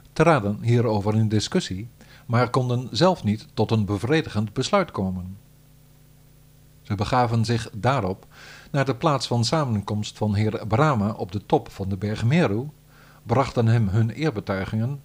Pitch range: 110-145 Hz